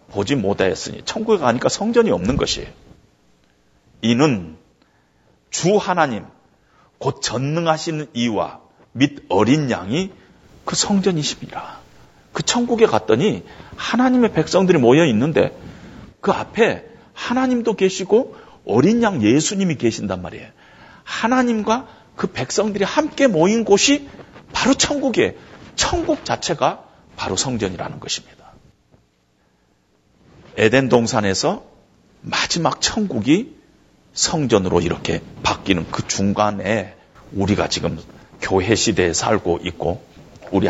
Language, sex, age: Korean, male, 40-59